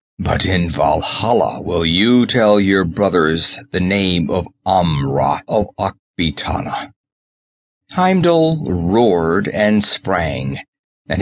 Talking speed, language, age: 100 wpm, English, 50-69